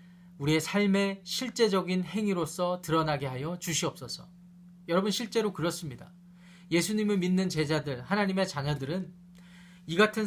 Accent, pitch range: native, 170-205 Hz